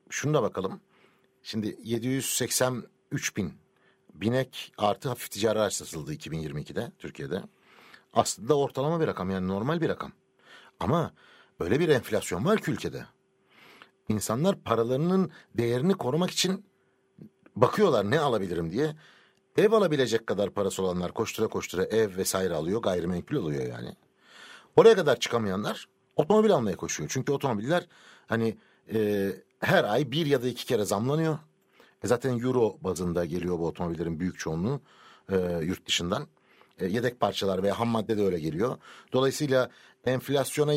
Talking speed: 135 wpm